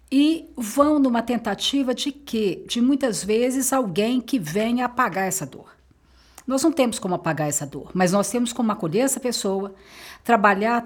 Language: Portuguese